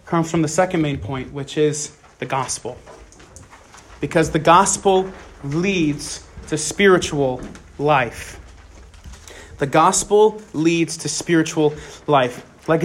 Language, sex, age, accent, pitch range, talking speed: English, male, 30-49, American, 150-195 Hz, 110 wpm